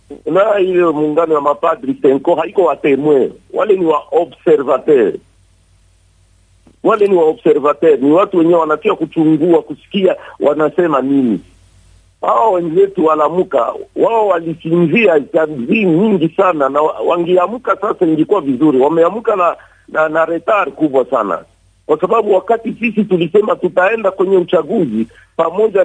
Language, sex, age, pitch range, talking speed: Swahili, male, 50-69, 155-200 Hz, 120 wpm